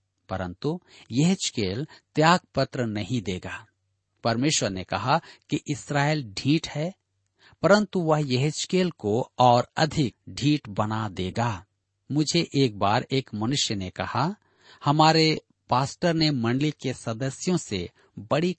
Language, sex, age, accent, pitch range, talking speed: Hindi, male, 50-69, native, 105-150 Hz, 125 wpm